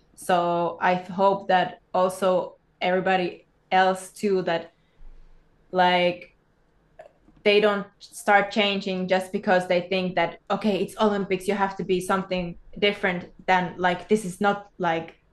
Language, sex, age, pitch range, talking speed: English, female, 20-39, 180-195 Hz, 135 wpm